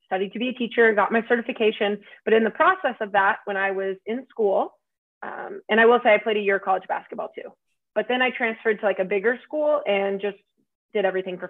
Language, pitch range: English, 195-230 Hz